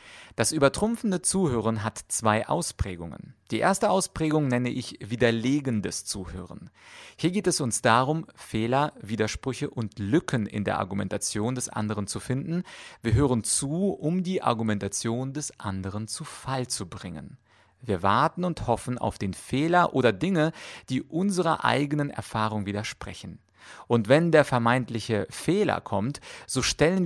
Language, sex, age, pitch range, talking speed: German, male, 30-49, 105-145 Hz, 140 wpm